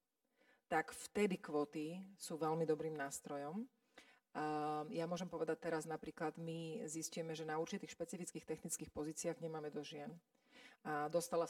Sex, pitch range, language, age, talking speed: female, 160-205 Hz, Slovak, 40-59, 135 wpm